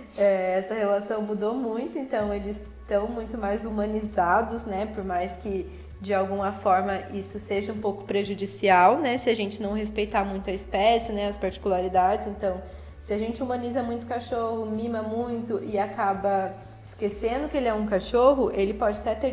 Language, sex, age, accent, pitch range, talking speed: Portuguese, female, 10-29, Brazilian, 195-220 Hz, 175 wpm